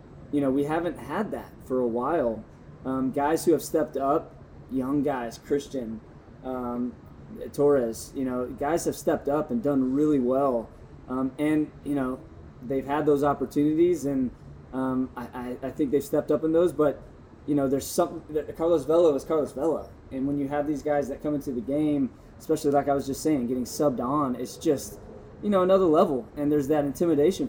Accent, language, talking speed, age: American, English, 195 wpm, 20-39